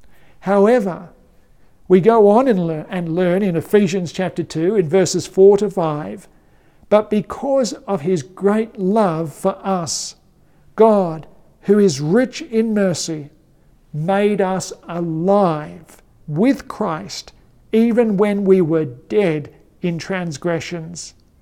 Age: 50-69